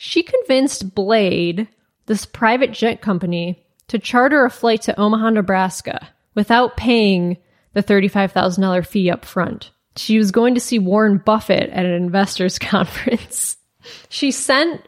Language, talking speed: English, 135 wpm